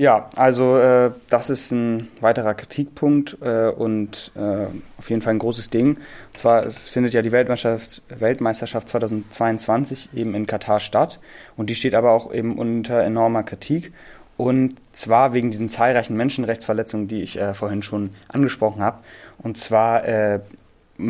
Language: German